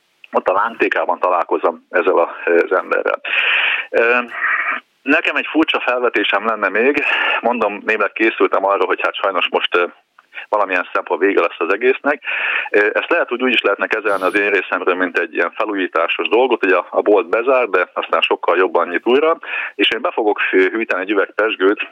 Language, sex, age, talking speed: Hungarian, male, 30-49, 155 wpm